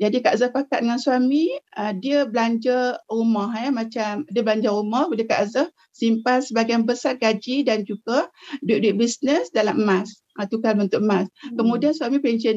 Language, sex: Malay, female